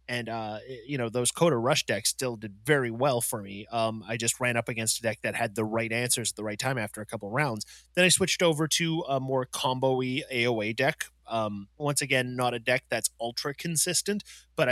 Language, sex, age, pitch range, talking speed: English, male, 30-49, 120-155 Hz, 225 wpm